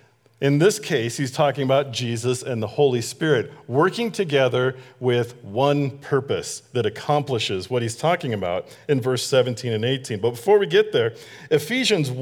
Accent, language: American, English